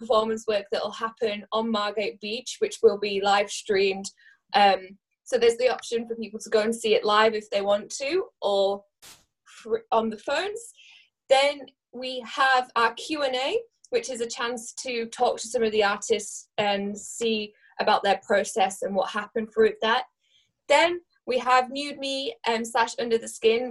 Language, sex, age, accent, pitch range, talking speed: English, female, 10-29, British, 210-270 Hz, 175 wpm